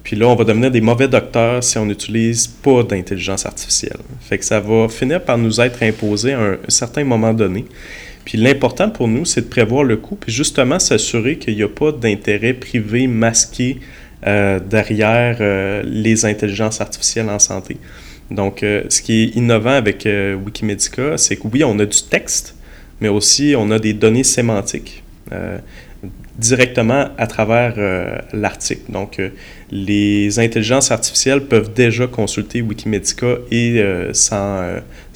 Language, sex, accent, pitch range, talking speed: French, male, Canadian, 100-120 Hz, 165 wpm